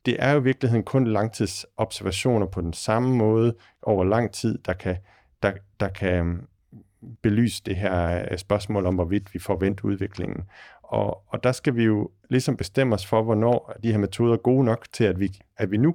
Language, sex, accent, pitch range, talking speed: Danish, male, native, 95-115 Hz, 190 wpm